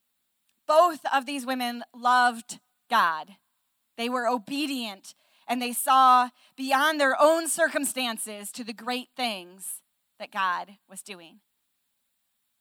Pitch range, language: 240-310 Hz, English